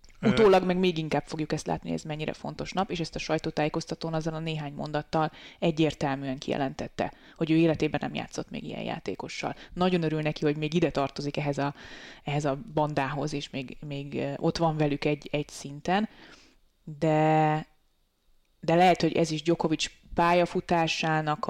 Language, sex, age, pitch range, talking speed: Hungarian, female, 20-39, 150-170 Hz, 165 wpm